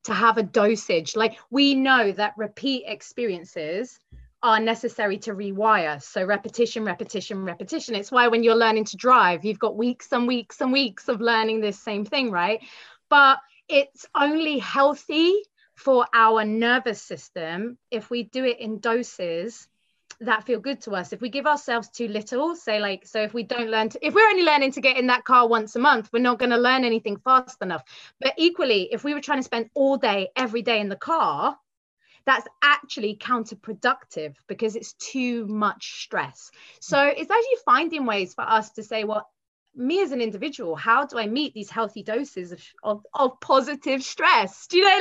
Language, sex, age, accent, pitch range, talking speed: English, female, 30-49, British, 215-270 Hz, 190 wpm